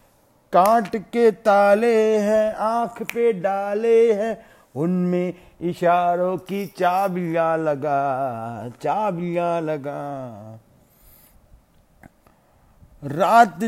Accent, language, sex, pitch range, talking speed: Indian, English, male, 160-210 Hz, 70 wpm